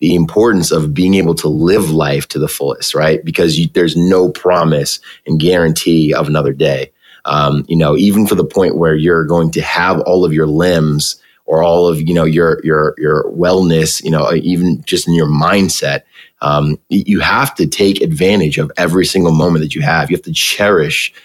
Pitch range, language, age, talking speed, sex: 75-85 Hz, English, 30-49, 200 wpm, male